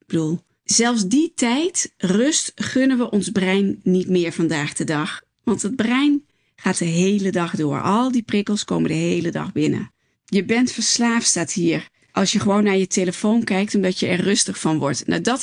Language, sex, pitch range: Dutch, female, 185-240 Hz